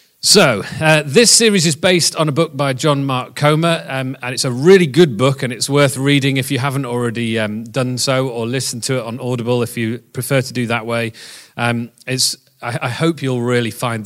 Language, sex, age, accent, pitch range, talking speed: English, male, 40-59, British, 110-135 Hz, 220 wpm